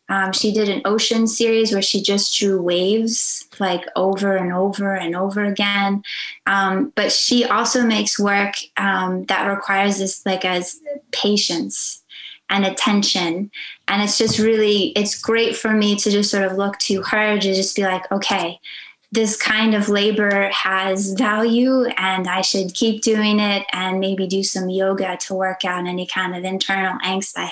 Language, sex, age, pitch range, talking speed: English, female, 20-39, 195-230 Hz, 170 wpm